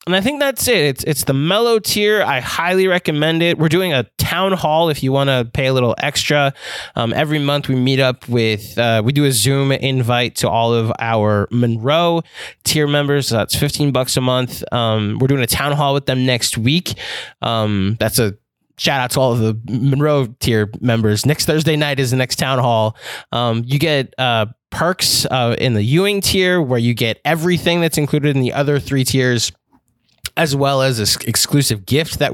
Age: 20-39